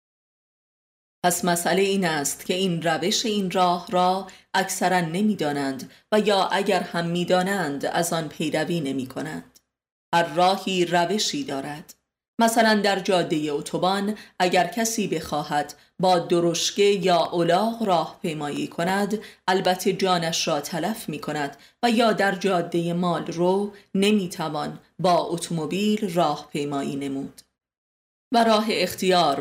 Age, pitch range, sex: 30-49, 165-195 Hz, female